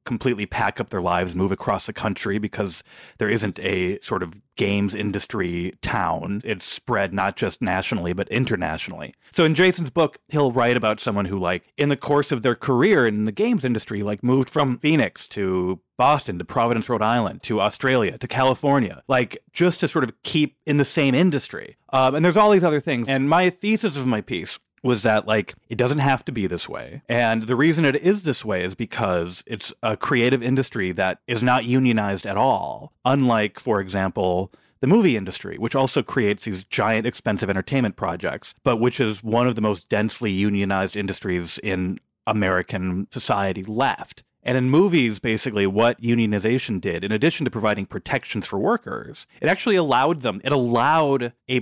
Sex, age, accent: male, 30-49, American